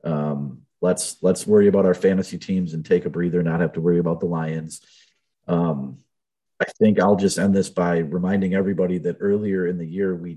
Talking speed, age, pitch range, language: 205 wpm, 30-49, 80-90 Hz, English